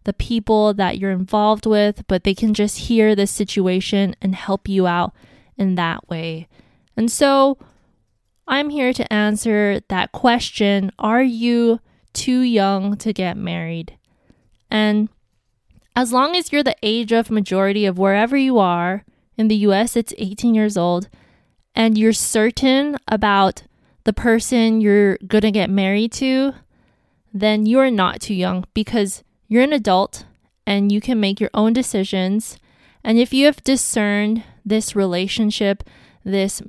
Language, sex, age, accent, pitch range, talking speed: English, female, 20-39, American, 195-230 Hz, 150 wpm